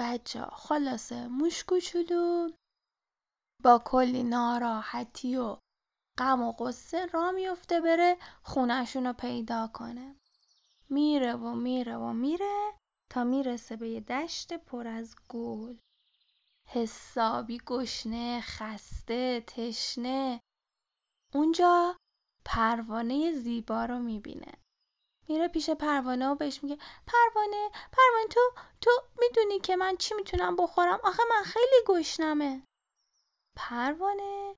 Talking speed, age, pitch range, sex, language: 105 wpm, 10-29, 245-370 Hz, female, Persian